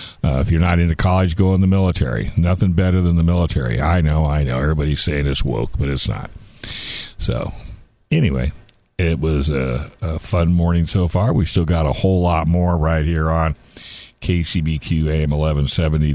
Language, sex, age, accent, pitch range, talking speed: English, male, 60-79, American, 75-95 Hz, 180 wpm